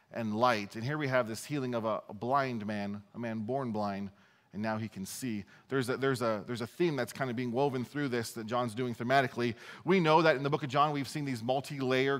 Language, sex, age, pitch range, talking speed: English, male, 30-49, 110-140 Hz, 260 wpm